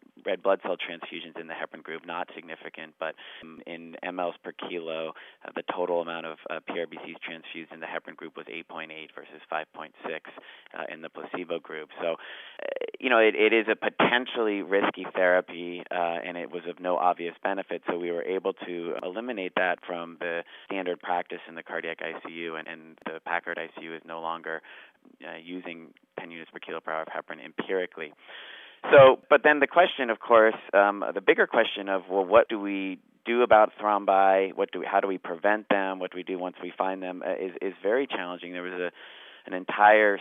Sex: male